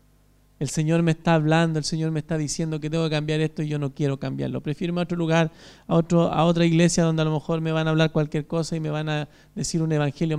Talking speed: 265 wpm